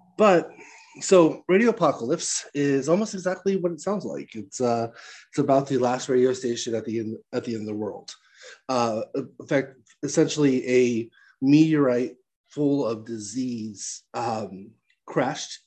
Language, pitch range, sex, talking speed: English, 125-150 Hz, male, 140 wpm